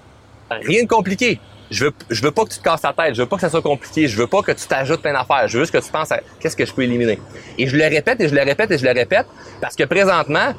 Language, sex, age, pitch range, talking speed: French, male, 30-49, 110-155 Hz, 315 wpm